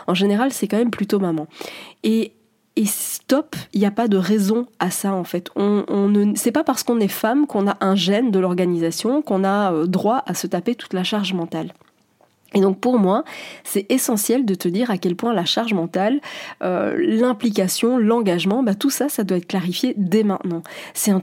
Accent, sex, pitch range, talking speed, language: French, female, 180-220 Hz, 210 wpm, French